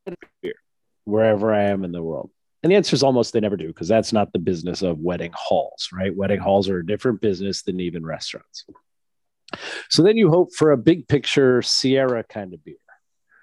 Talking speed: 195 wpm